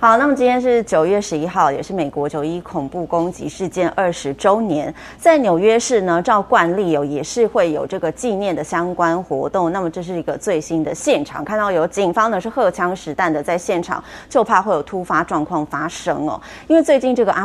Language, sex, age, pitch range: Chinese, female, 20-39, 170-230 Hz